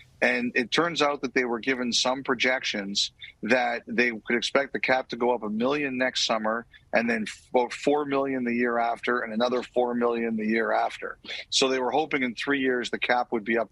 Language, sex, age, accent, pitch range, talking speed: English, male, 40-59, American, 115-135 Hz, 215 wpm